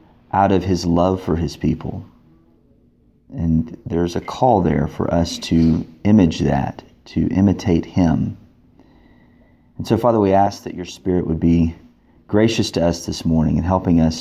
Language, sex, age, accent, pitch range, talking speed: English, male, 30-49, American, 85-105 Hz, 160 wpm